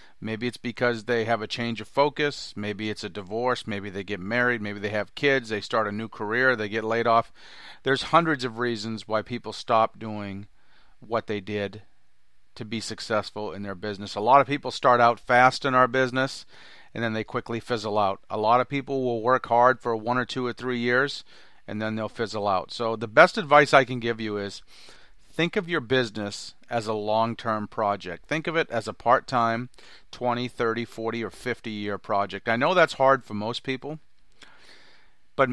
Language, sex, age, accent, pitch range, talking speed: English, male, 40-59, American, 110-125 Hz, 200 wpm